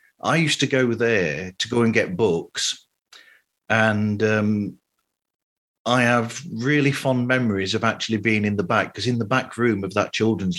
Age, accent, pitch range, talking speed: 40-59, British, 100-125 Hz, 175 wpm